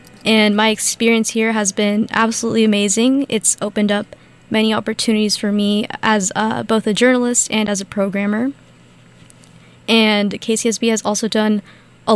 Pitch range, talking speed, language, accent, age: 205-235 Hz, 150 wpm, English, American, 20-39